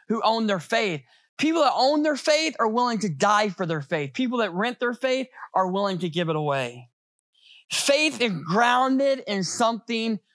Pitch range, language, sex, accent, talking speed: 185-245 Hz, English, male, American, 185 wpm